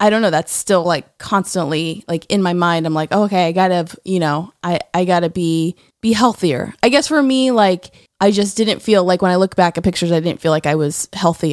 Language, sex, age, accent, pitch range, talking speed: English, female, 20-39, American, 170-225 Hz, 260 wpm